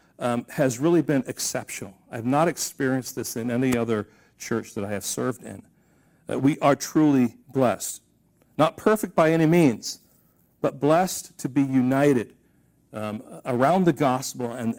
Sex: male